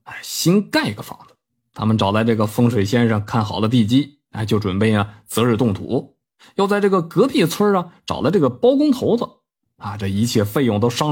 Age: 20-39